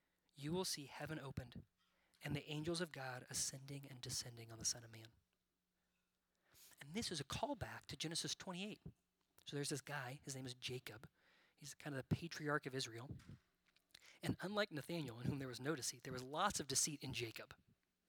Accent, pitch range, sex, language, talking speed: American, 130-170 Hz, male, English, 190 wpm